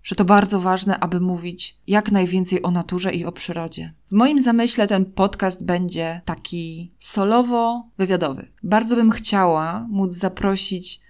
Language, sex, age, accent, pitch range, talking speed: Polish, female, 20-39, native, 170-195 Hz, 140 wpm